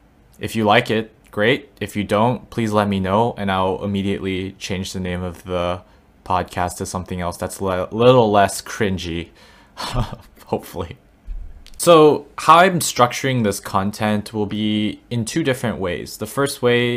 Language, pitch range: English, 90-110 Hz